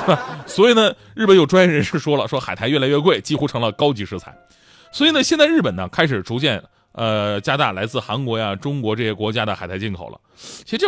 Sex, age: male, 30-49